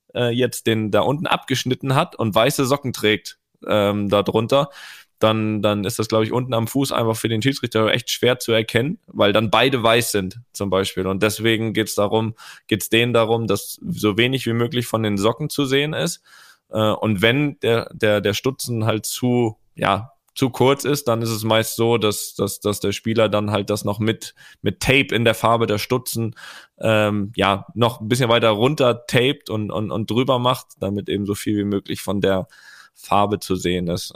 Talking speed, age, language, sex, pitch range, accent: 200 wpm, 10-29, German, male, 100-120 Hz, German